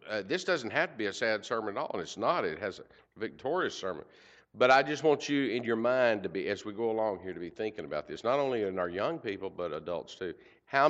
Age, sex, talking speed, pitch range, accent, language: 50-69, male, 270 wpm, 105-160 Hz, American, English